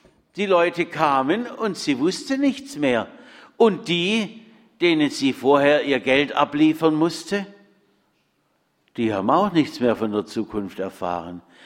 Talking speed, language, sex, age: 135 wpm, German, male, 60-79